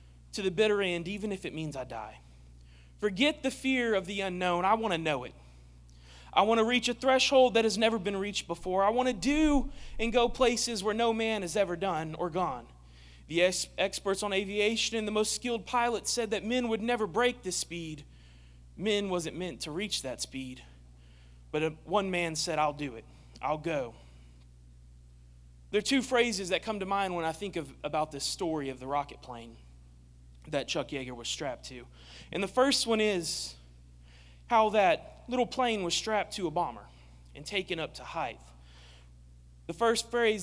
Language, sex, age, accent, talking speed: English, male, 30-49, American, 195 wpm